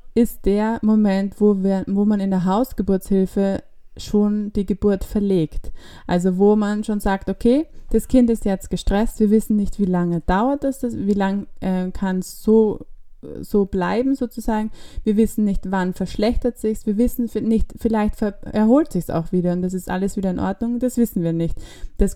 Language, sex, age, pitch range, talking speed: German, female, 20-39, 190-225 Hz, 185 wpm